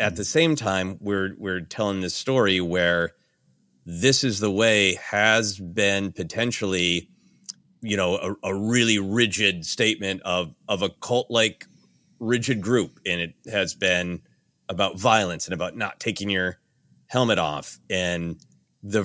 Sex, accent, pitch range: male, American, 90-120 Hz